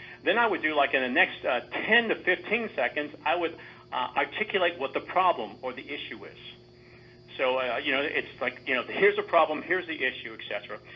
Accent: American